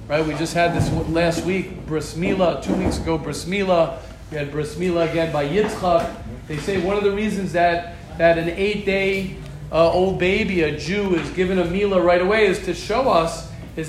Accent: American